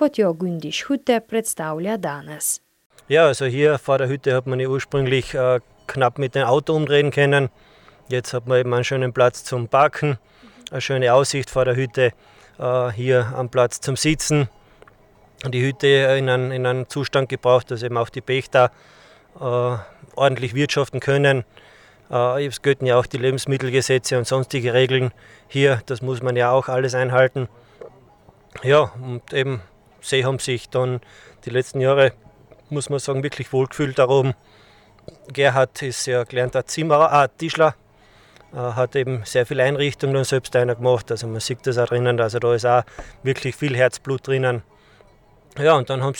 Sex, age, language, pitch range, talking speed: male, 20-39, German, 125-140 Hz, 160 wpm